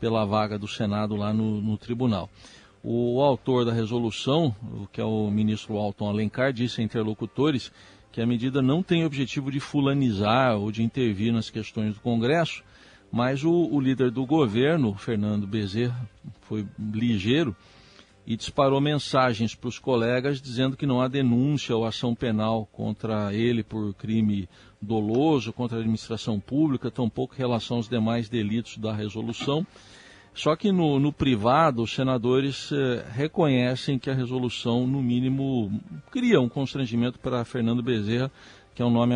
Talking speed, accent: 155 wpm, Brazilian